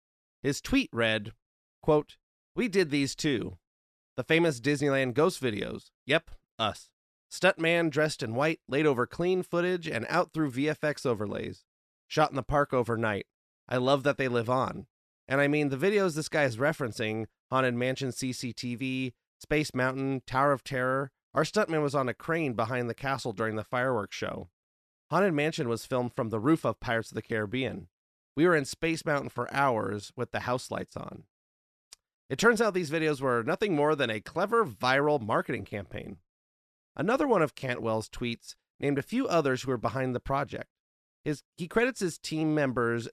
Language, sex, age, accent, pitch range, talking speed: English, male, 30-49, American, 120-155 Hz, 175 wpm